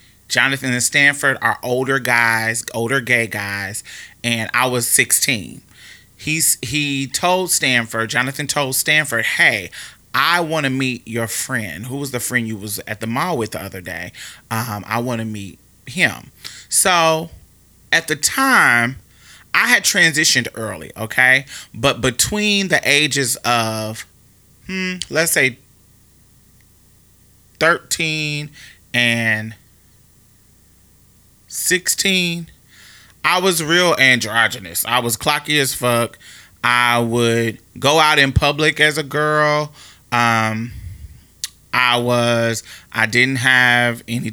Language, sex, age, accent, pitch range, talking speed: English, male, 30-49, American, 110-140 Hz, 120 wpm